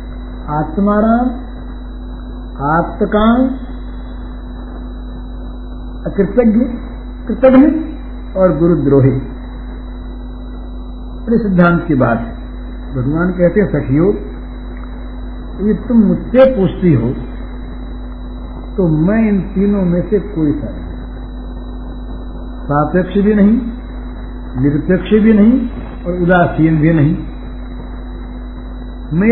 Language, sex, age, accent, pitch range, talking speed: Hindi, male, 60-79, native, 150-215 Hz, 75 wpm